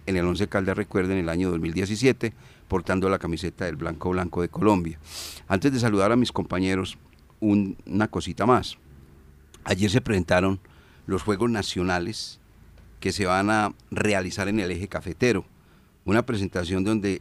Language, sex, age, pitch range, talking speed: Spanish, male, 40-59, 90-110 Hz, 155 wpm